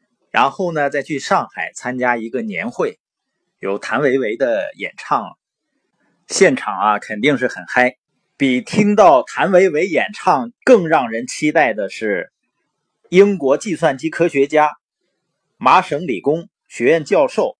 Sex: male